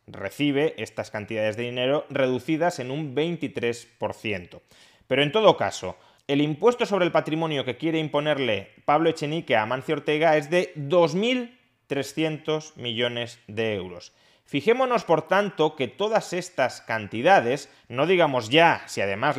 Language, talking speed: Spanish, 135 wpm